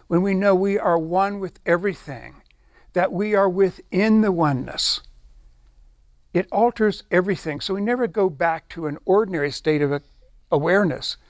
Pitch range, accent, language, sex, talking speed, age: 125-190 Hz, American, English, male, 150 wpm, 60-79